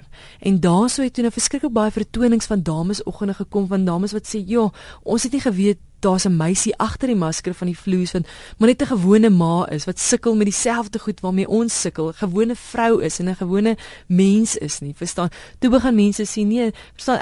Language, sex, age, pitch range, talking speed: English, female, 30-49, 180-235 Hz, 215 wpm